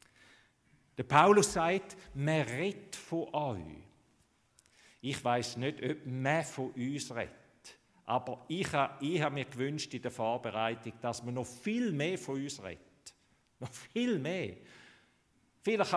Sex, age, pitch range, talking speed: male, 50-69, 120-160 Hz, 130 wpm